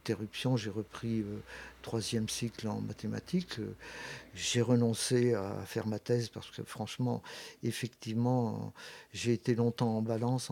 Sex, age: male, 50-69